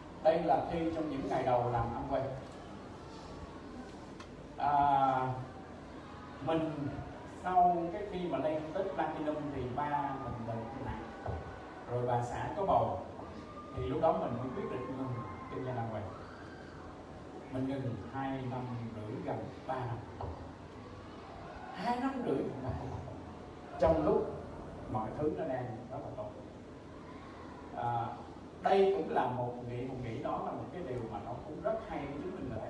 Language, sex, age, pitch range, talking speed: Vietnamese, male, 20-39, 120-155 Hz, 160 wpm